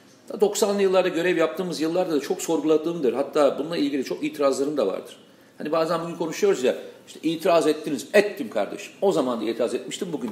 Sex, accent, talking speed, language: male, native, 180 wpm, Turkish